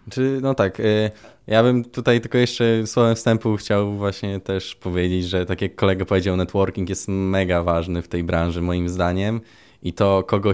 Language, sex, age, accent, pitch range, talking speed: Polish, male, 20-39, native, 90-115 Hz, 170 wpm